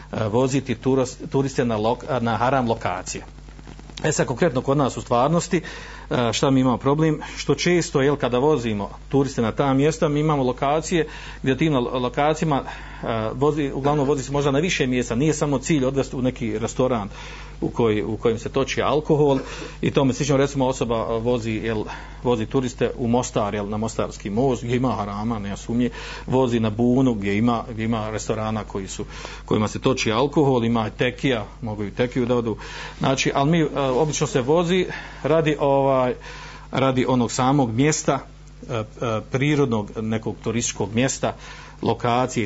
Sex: male